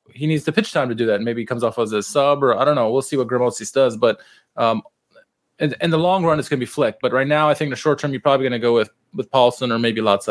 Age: 20-39